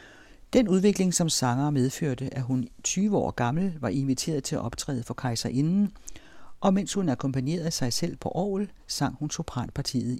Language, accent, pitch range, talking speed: Danish, native, 125-170 Hz, 170 wpm